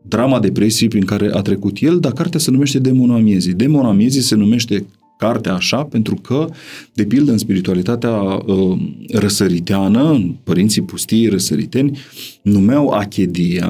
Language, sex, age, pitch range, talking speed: Romanian, male, 40-59, 95-120 Hz, 140 wpm